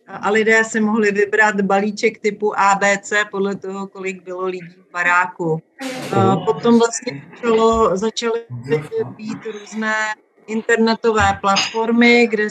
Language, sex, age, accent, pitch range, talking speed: Czech, female, 40-59, native, 200-220 Hz, 120 wpm